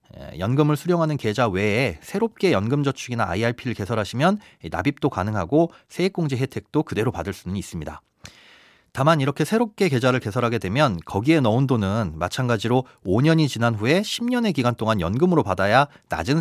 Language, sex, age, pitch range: Korean, male, 30-49, 110-160 Hz